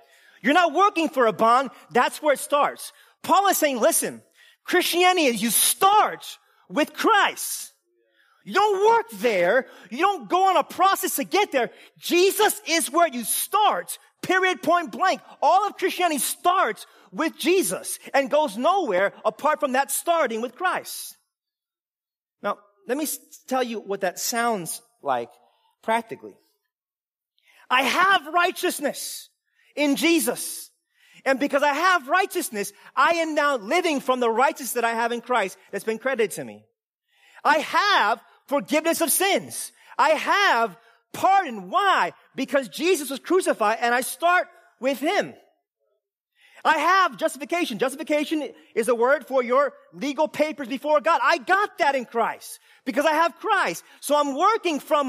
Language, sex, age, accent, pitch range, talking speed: English, male, 40-59, American, 255-360 Hz, 150 wpm